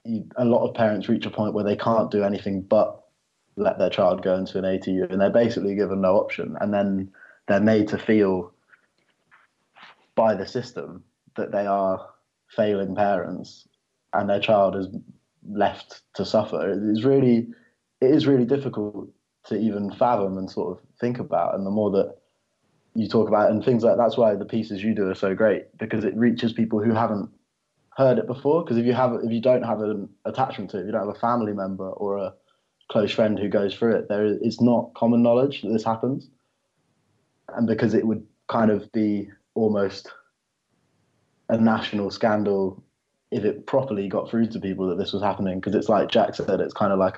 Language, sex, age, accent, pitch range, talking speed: English, male, 20-39, British, 100-115 Hz, 200 wpm